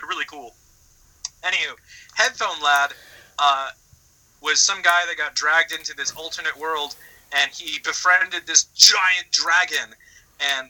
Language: English